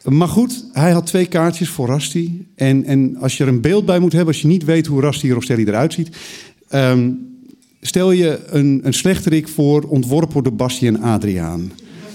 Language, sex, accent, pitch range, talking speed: Dutch, male, Dutch, 120-165 Hz, 205 wpm